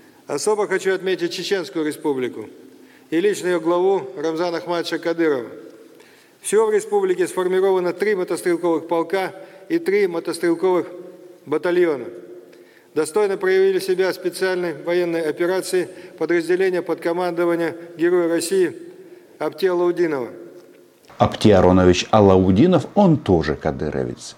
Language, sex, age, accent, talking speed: Russian, male, 40-59, native, 100 wpm